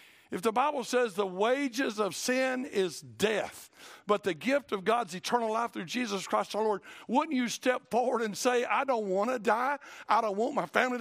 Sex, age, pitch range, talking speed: male, 60-79, 175-260 Hz, 205 wpm